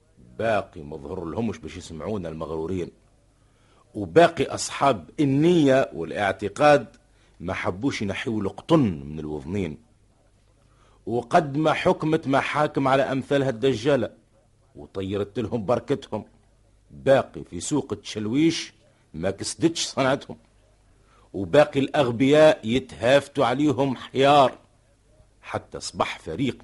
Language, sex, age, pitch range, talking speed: Arabic, male, 50-69, 100-140 Hz, 90 wpm